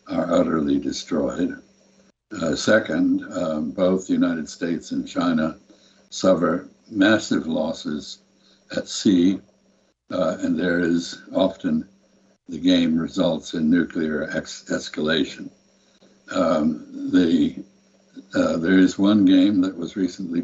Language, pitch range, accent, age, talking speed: English, 190-280 Hz, American, 60-79, 115 wpm